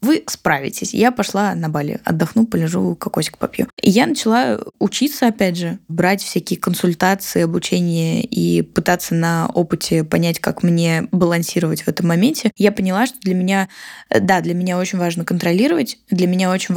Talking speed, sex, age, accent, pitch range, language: 160 wpm, female, 10-29, native, 175-205 Hz, Russian